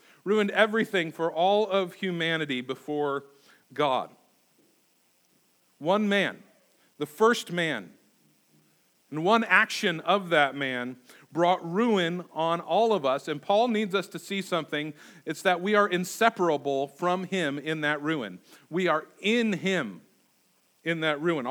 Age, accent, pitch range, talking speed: 40-59, American, 170-205 Hz, 135 wpm